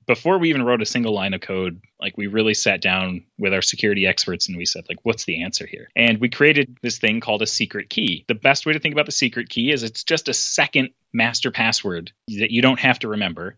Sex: male